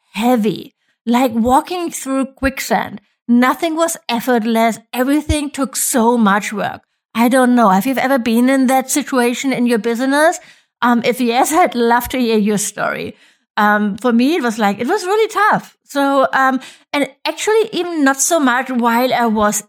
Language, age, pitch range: English, 60-79, 230-285 Hz